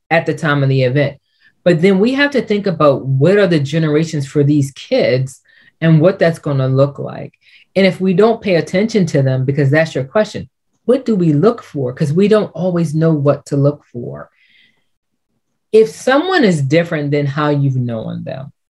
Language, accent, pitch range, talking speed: English, American, 140-190 Hz, 195 wpm